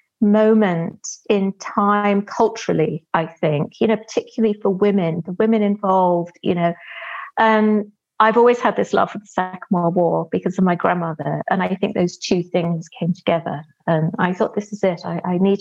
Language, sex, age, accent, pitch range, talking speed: English, female, 30-49, British, 180-230 Hz, 185 wpm